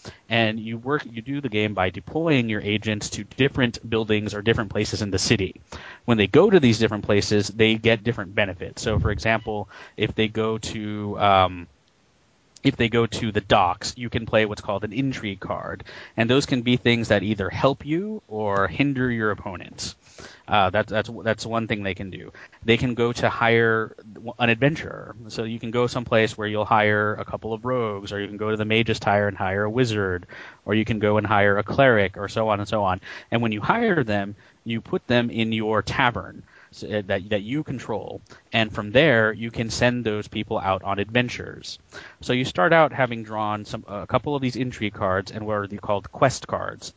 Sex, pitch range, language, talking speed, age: male, 105-120 Hz, English, 210 wpm, 30-49